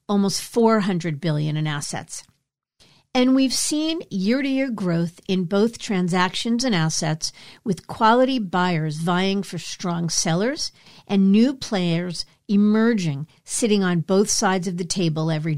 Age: 50-69